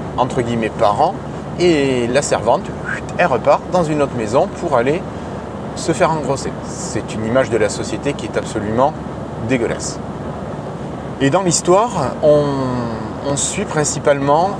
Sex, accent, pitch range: male, French, 115-145 Hz